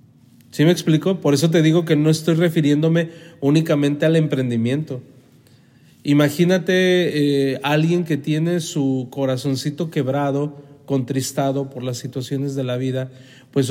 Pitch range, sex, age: 130-150 Hz, male, 40-59